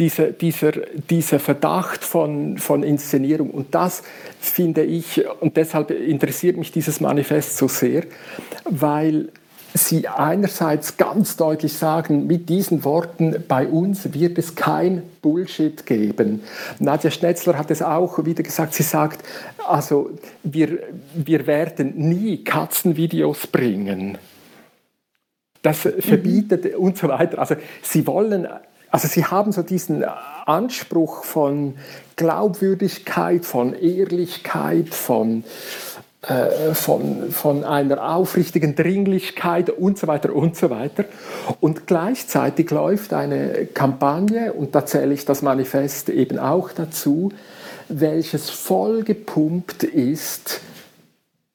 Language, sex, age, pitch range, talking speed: German, male, 50-69, 145-175 Hz, 115 wpm